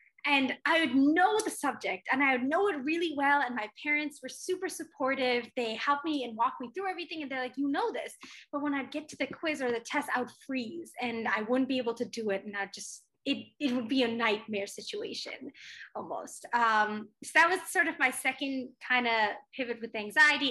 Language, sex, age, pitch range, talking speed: English, female, 20-39, 230-285 Hz, 230 wpm